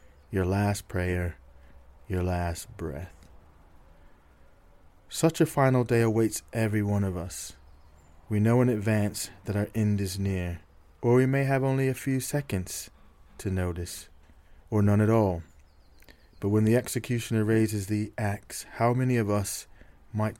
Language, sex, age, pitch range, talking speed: English, male, 30-49, 90-120 Hz, 145 wpm